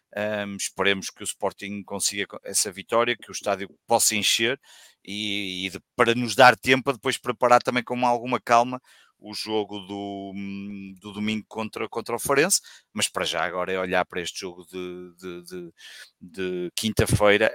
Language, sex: Portuguese, male